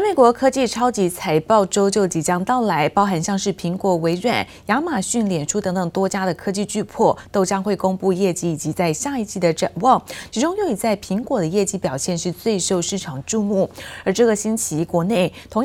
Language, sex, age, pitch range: Chinese, female, 30-49, 175-235 Hz